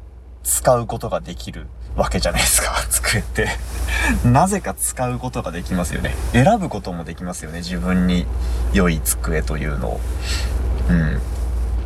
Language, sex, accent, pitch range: Japanese, male, native, 75-90 Hz